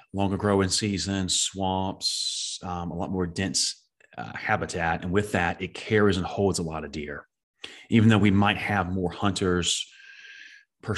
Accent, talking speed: American, 165 wpm